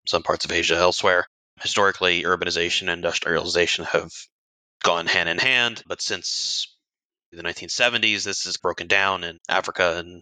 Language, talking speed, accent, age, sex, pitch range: English, 145 wpm, American, 20-39, male, 90-110 Hz